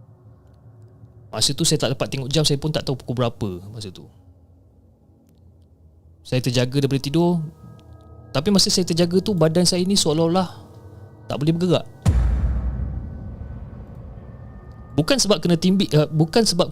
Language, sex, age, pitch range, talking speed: Malay, male, 20-39, 105-145 Hz, 135 wpm